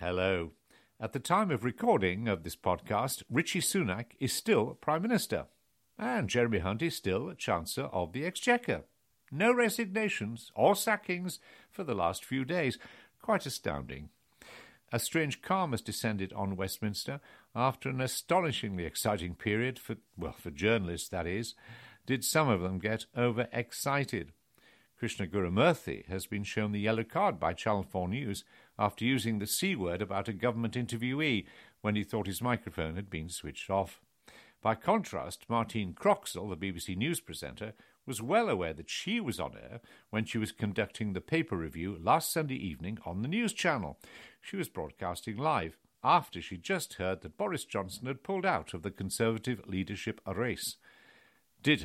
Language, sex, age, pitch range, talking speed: English, male, 60-79, 95-130 Hz, 160 wpm